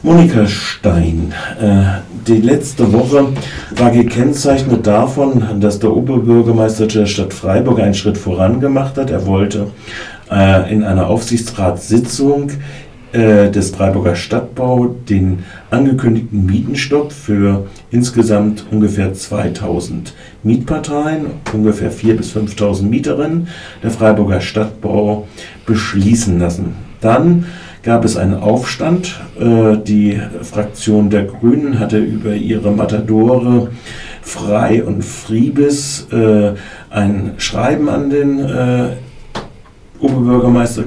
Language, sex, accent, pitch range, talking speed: German, male, German, 105-125 Hz, 95 wpm